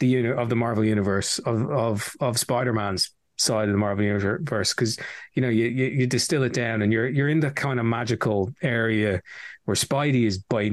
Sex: male